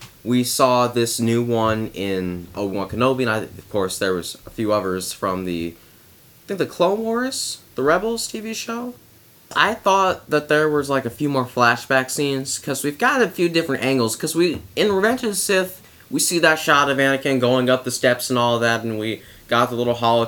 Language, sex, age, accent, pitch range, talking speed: English, male, 20-39, American, 110-145 Hz, 215 wpm